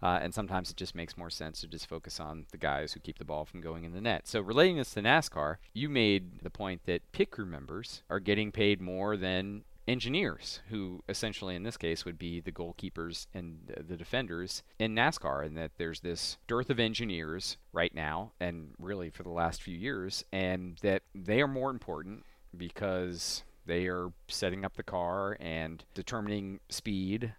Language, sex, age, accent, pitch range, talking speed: English, male, 40-59, American, 85-100 Hz, 195 wpm